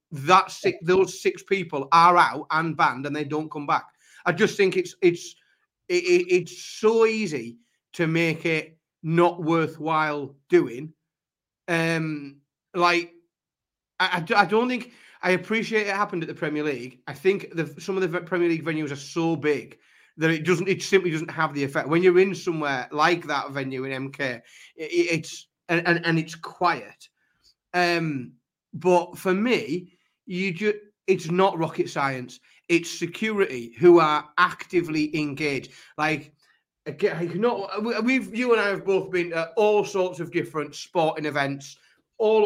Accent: British